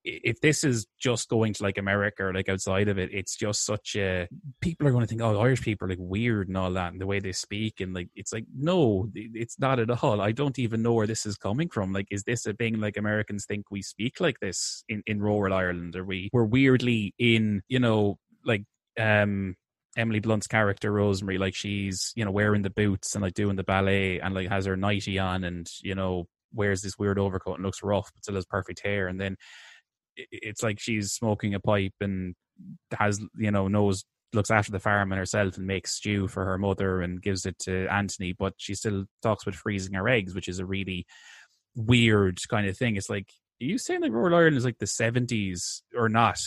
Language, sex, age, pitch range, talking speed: English, male, 20-39, 95-115 Hz, 225 wpm